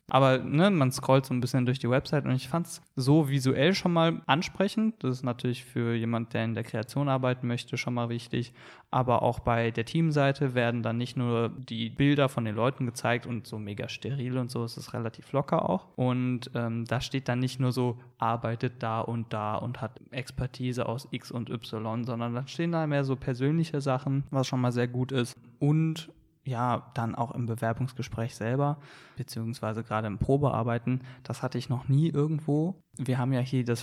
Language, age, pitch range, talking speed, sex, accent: German, 20-39, 120-140 Hz, 200 wpm, male, German